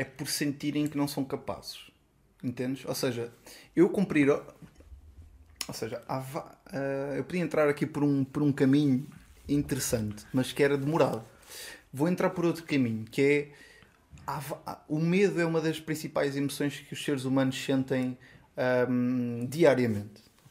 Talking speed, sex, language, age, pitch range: 140 wpm, male, Portuguese, 20-39, 130-190 Hz